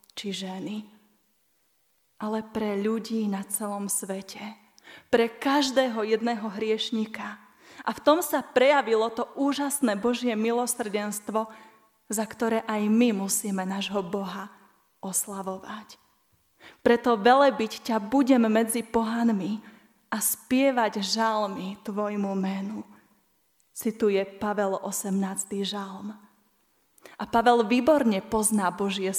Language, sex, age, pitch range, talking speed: Slovak, female, 20-39, 205-245 Hz, 100 wpm